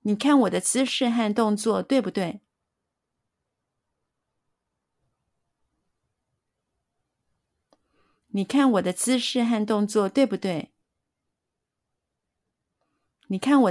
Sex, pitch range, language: female, 190-255 Hz, Chinese